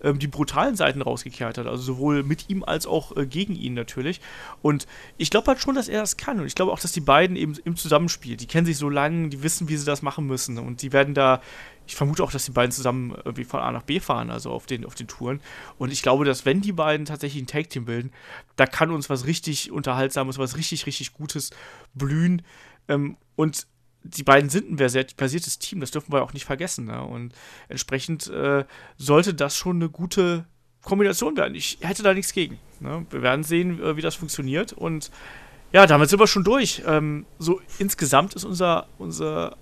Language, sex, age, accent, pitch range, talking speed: German, male, 30-49, German, 135-175 Hz, 210 wpm